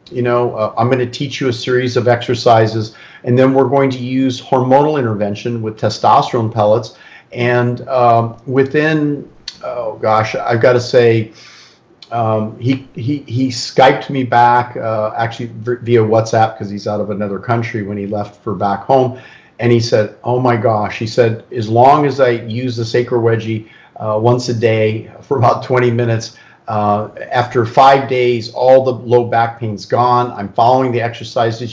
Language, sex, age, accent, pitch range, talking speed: English, male, 50-69, American, 110-125 Hz, 175 wpm